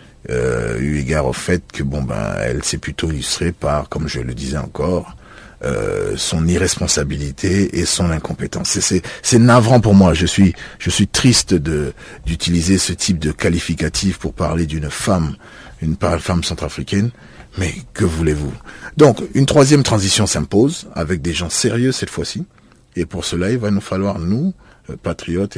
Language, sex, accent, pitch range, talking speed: French, male, French, 80-100 Hz, 165 wpm